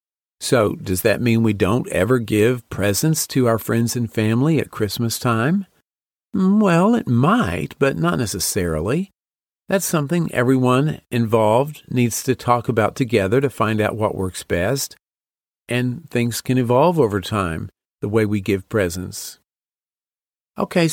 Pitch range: 105-135 Hz